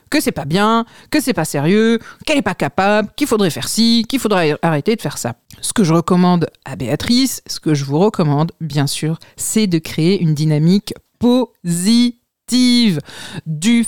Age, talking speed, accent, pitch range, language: 40-59, 180 wpm, French, 165-240 Hz, French